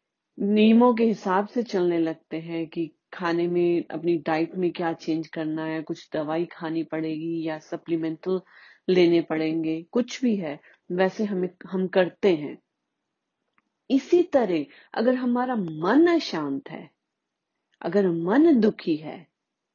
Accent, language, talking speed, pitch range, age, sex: native, Hindi, 135 wpm, 165-225 Hz, 30-49, female